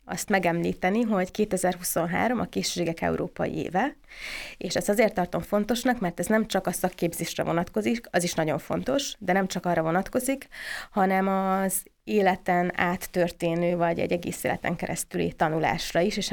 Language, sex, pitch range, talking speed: Hungarian, female, 175-195 Hz, 150 wpm